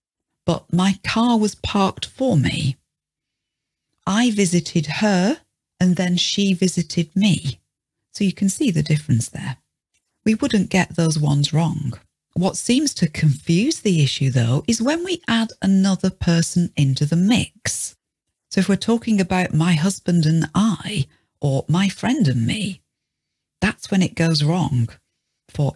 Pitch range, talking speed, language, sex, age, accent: 150-200 Hz, 150 wpm, English, female, 40-59, British